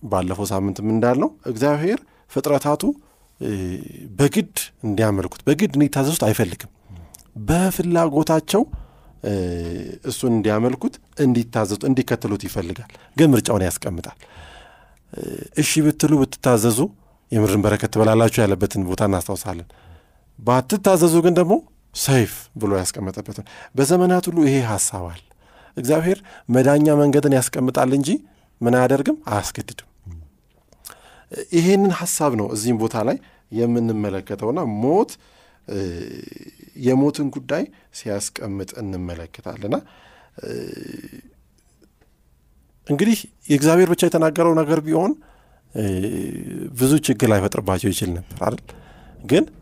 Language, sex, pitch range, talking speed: Amharic, male, 95-145 Hz, 75 wpm